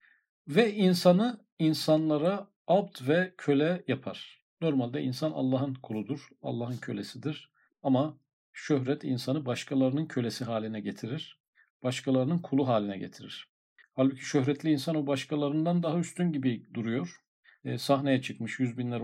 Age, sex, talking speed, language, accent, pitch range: 50-69, male, 115 wpm, Turkish, native, 125-155 Hz